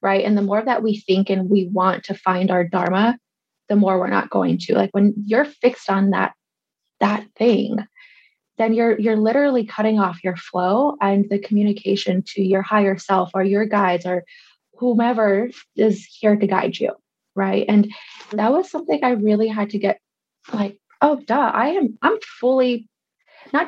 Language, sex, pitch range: English, female, 200-235 Hz